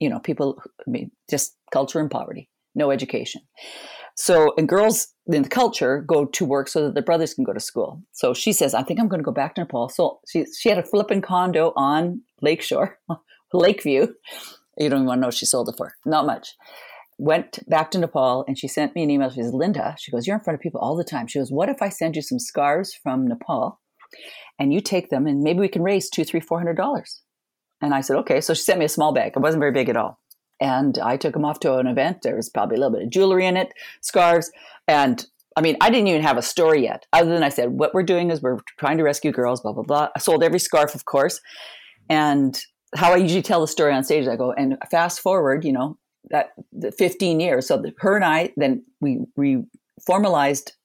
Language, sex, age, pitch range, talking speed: English, female, 40-59, 140-185 Hz, 245 wpm